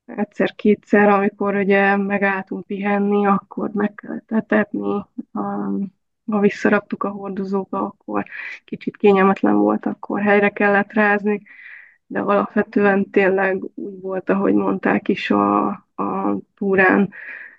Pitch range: 190-210 Hz